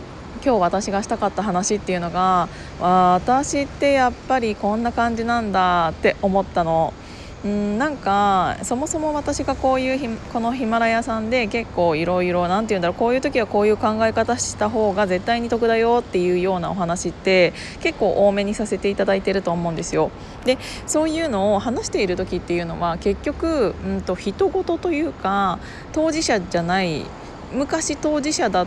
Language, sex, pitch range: Japanese, female, 180-240 Hz